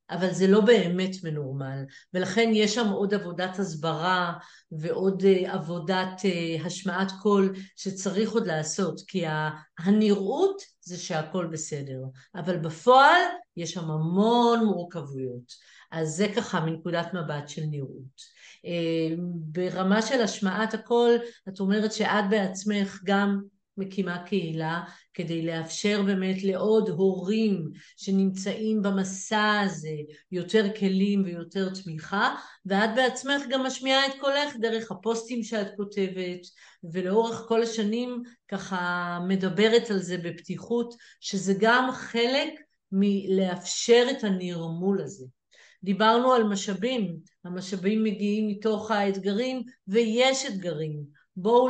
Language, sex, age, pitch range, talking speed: Hebrew, female, 50-69, 180-230 Hz, 110 wpm